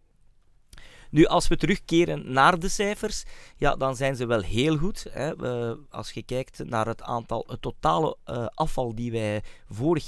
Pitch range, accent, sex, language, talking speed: 130-165 Hz, Belgian, male, Dutch, 160 wpm